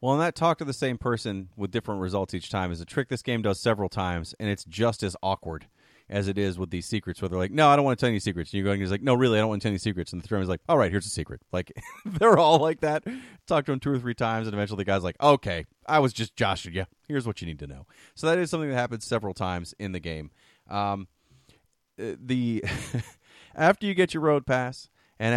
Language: English